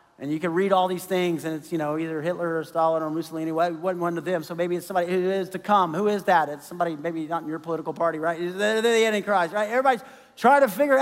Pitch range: 185-255 Hz